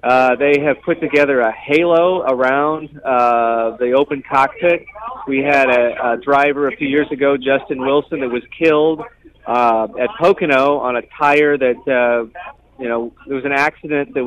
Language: English